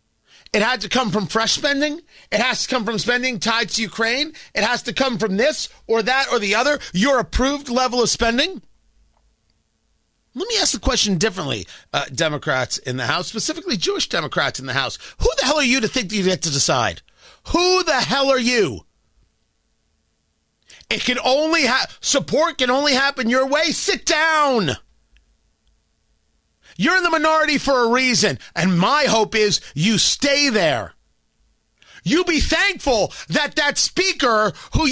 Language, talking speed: English, 170 wpm